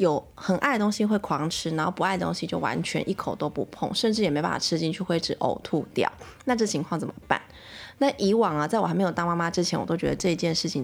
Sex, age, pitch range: female, 20-39, 165-230 Hz